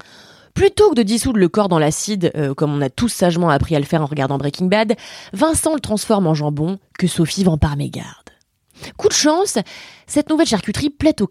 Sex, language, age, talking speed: female, French, 20-39, 205 wpm